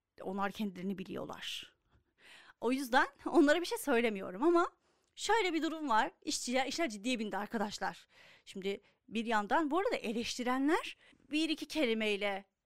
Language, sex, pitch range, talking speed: Turkish, female, 205-300 Hz, 135 wpm